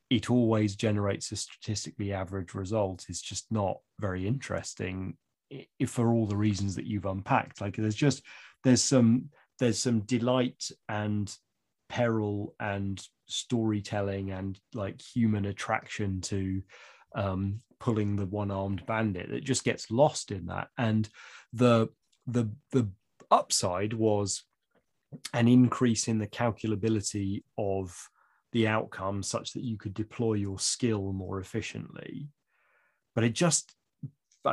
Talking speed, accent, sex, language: 130 wpm, British, male, English